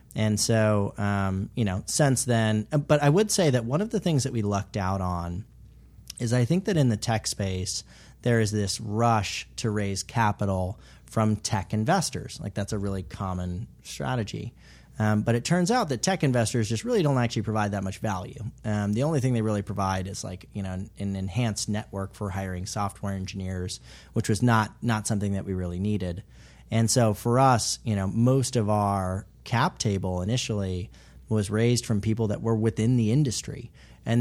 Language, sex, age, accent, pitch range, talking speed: English, male, 30-49, American, 100-120 Hz, 195 wpm